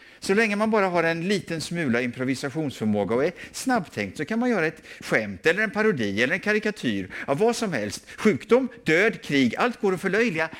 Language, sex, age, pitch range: English, male, 50-69, 100-145 Hz